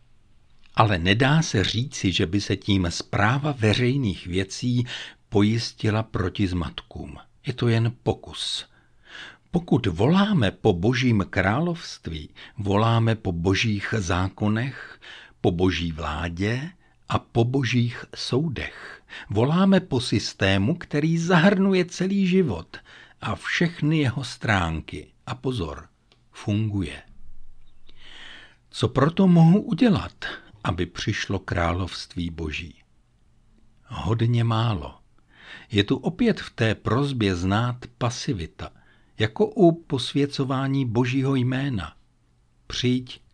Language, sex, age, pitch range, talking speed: Czech, male, 60-79, 100-140 Hz, 100 wpm